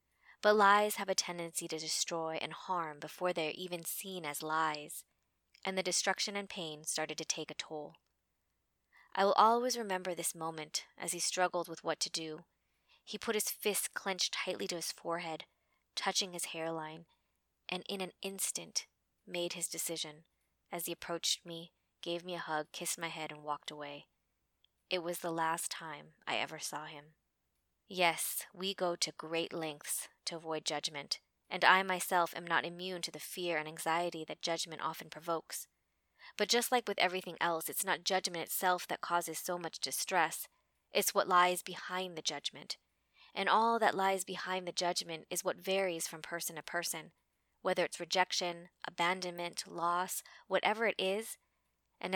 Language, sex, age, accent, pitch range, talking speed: English, female, 20-39, American, 160-190 Hz, 170 wpm